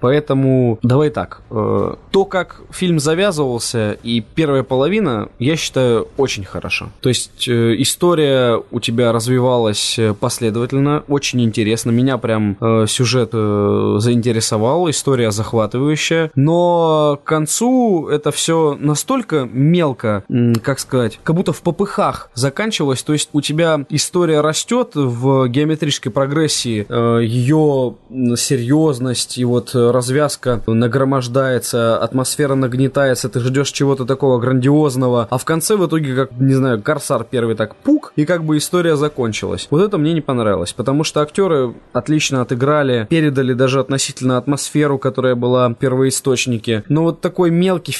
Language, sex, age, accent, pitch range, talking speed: Russian, male, 20-39, native, 120-150 Hz, 135 wpm